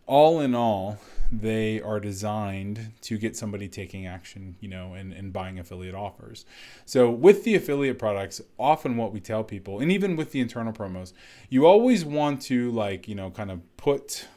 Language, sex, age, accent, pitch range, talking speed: English, male, 20-39, American, 95-120 Hz, 180 wpm